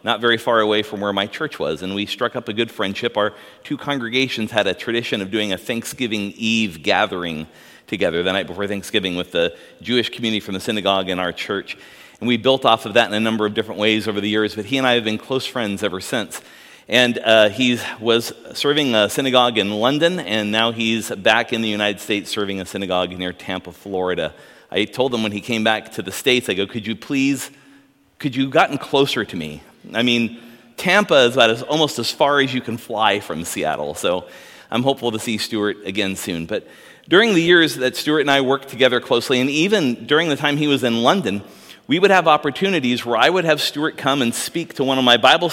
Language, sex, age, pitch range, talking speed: English, male, 40-59, 105-130 Hz, 225 wpm